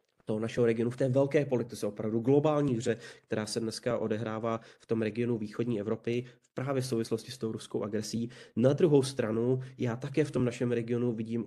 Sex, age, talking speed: male, 30-49, 195 wpm